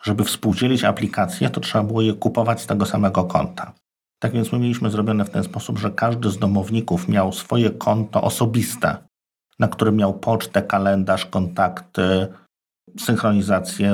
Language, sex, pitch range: Polish, male, 100-120 Hz